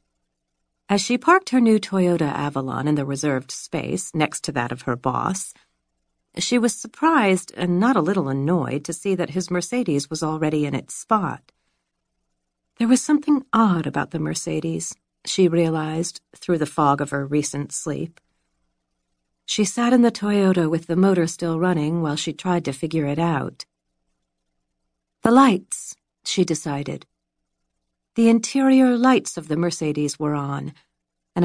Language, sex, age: English, female, 40-59